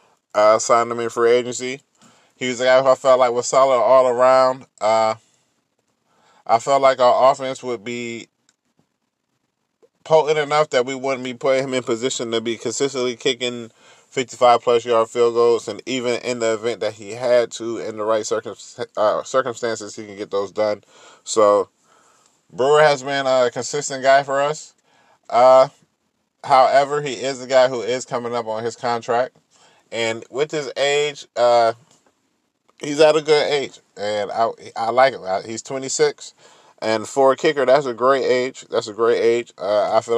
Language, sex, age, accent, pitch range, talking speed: English, male, 20-39, American, 115-130 Hz, 175 wpm